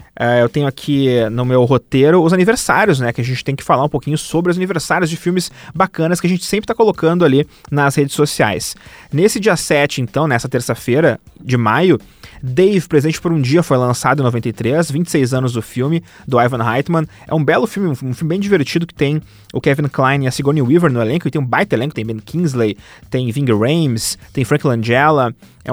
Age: 30-49